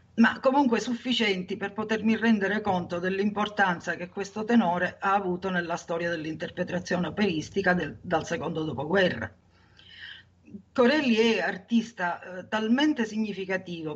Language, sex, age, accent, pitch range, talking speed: Italian, female, 50-69, native, 175-225 Hz, 110 wpm